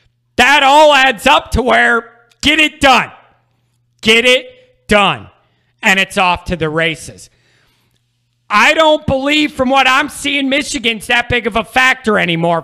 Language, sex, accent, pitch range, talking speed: English, male, American, 180-255 Hz, 150 wpm